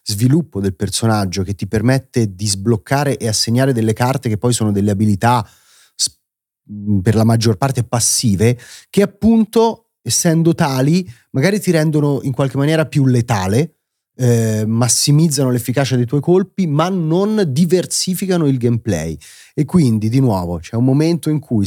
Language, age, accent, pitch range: Italian, 30-49, native, 110-145 Hz